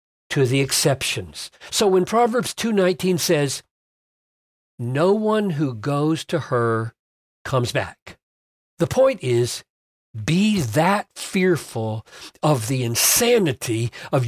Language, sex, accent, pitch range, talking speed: English, male, American, 115-185 Hz, 115 wpm